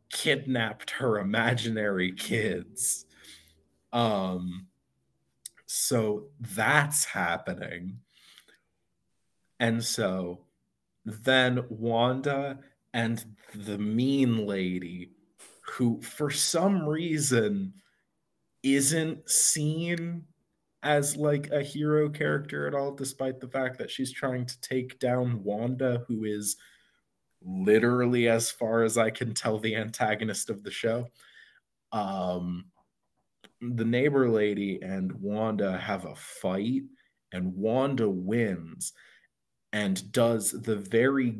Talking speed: 100 wpm